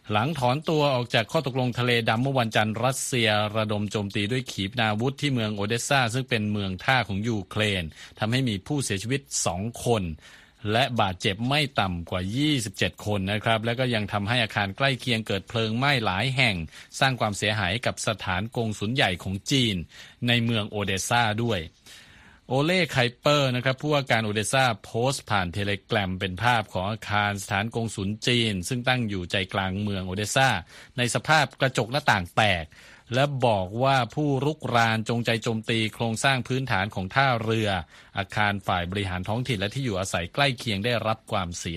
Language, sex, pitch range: Thai, male, 100-130 Hz